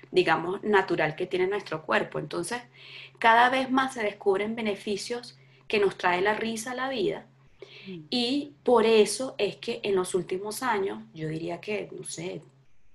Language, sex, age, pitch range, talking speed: English, female, 30-49, 175-220 Hz, 160 wpm